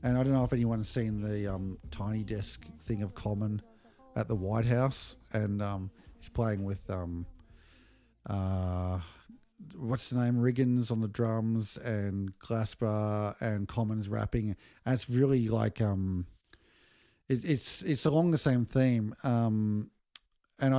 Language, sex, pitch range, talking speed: English, male, 105-125 Hz, 145 wpm